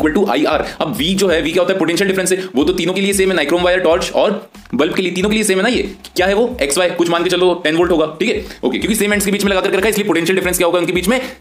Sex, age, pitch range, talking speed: male, 30-49, 175-215 Hz, 130 wpm